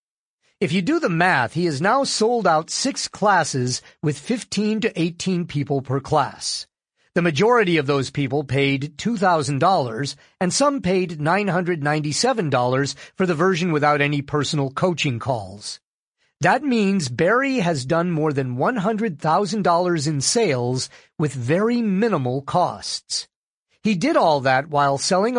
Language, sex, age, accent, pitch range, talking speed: English, male, 50-69, American, 140-190 Hz, 135 wpm